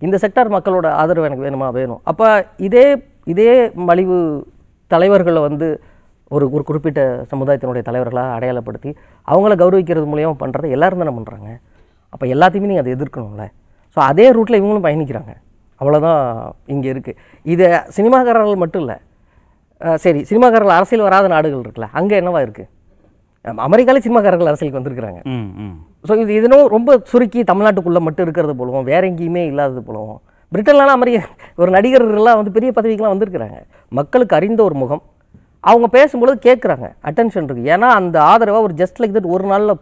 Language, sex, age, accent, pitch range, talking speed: Tamil, female, 30-49, native, 130-215 Hz, 145 wpm